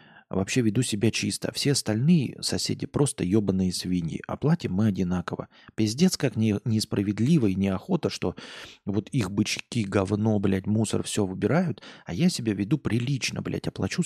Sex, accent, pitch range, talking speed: male, native, 100-130 Hz, 150 wpm